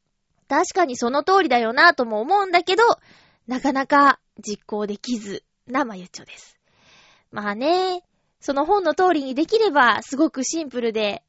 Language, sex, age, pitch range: Japanese, female, 20-39, 230-315 Hz